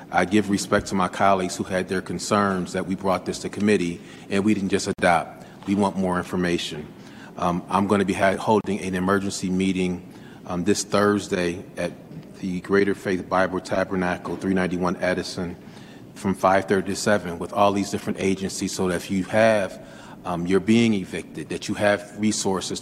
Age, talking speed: 40-59, 175 wpm